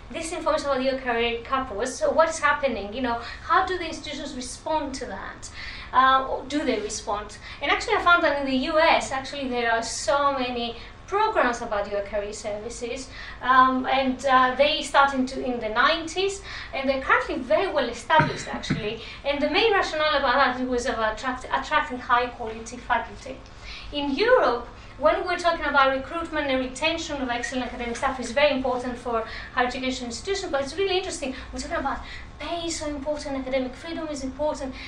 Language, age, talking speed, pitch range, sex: English, 20-39, 180 wpm, 245-300 Hz, female